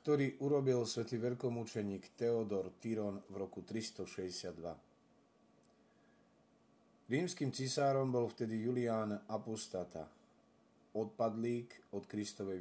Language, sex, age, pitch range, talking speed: Slovak, male, 40-59, 105-125 Hz, 85 wpm